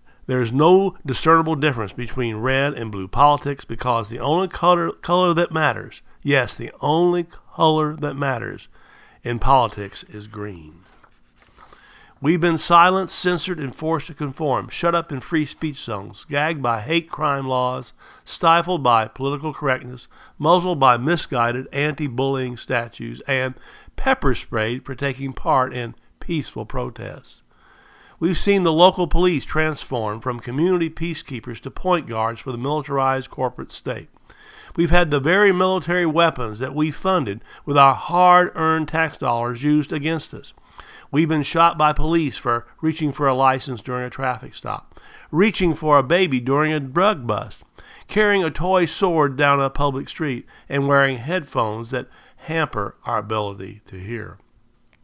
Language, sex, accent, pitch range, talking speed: English, male, American, 125-165 Hz, 150 wpm